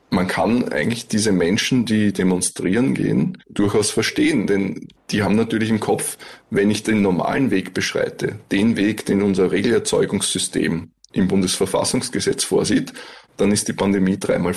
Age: 20-39